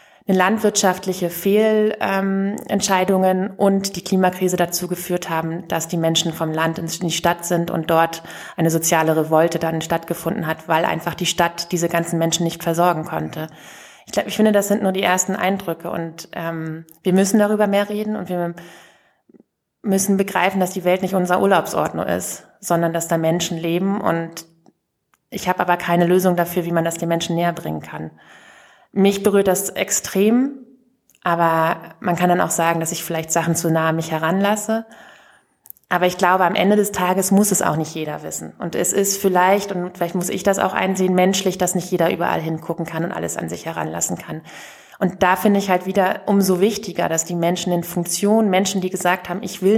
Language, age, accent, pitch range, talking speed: German, 20-39, German, 165-195 Hz, 190 wpm